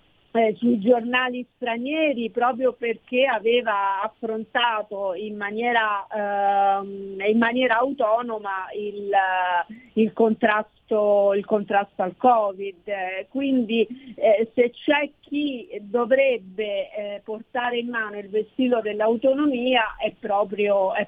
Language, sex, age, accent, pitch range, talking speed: Italian, female, 40-59, native, 205-240 Hz, 105 wpm